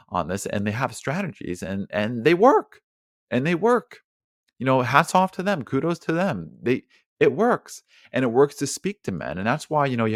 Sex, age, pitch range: male, 30-49, 100-145 Hz